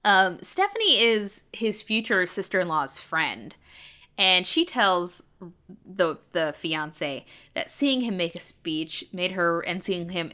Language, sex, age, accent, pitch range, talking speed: English, female, 10-29, American, 165-215 Hz, 140 wpm